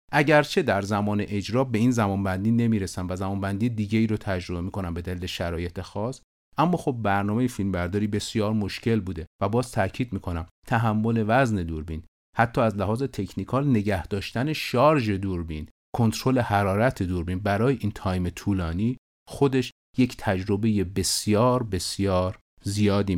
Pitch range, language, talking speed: 95-125 Hz, Persian, 145 wpm